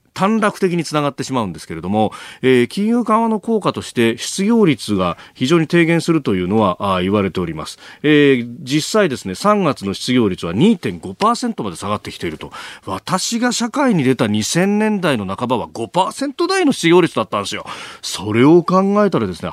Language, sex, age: Japanese, male, 40-59